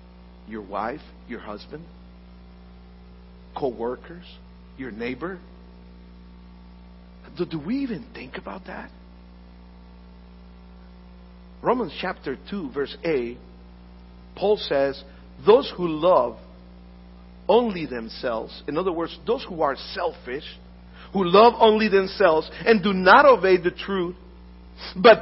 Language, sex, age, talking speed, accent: English, male, 50-69, 105 wpm, American